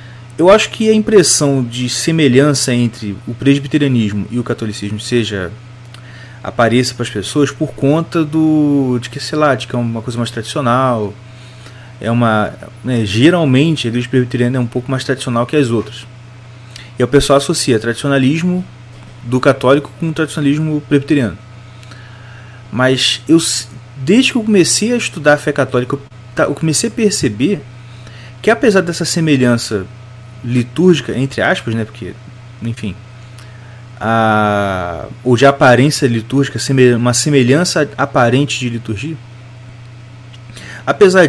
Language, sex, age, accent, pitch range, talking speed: Portuguese, male, 30-49, Brazilian, 120-150 Hz, 135 wpm